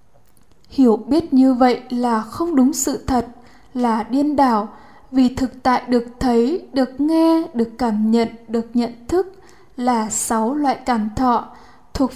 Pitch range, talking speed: 235-280 Hz, 155 wpm